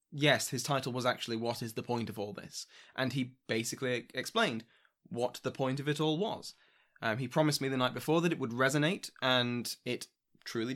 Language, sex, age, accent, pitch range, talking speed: English, male, 20-39, British, 115-145 Hz, 205 wpm